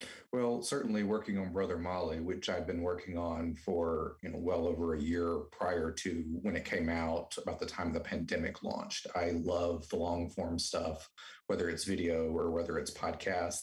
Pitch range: 85-95 Hz